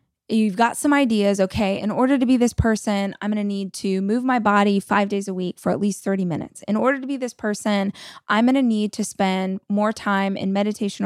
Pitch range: 195-245 Hz